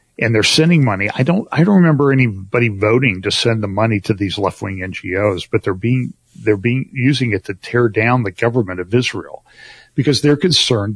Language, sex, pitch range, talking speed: English, male, 105-140 Hz, 205 wpm